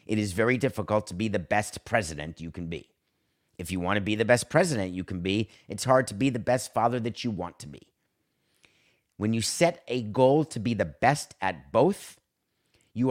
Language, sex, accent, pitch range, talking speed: English, male, American, 105-135 Hz, 210 wpm